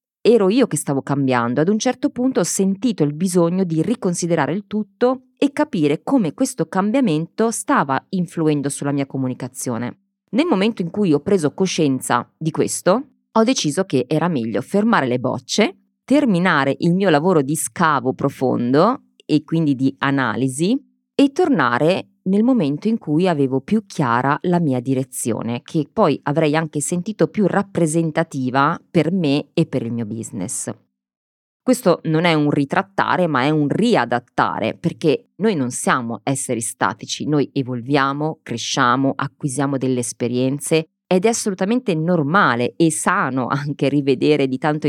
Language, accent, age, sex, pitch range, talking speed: Italian, native, 30-49, female, 135-195 Hz, 150 wpm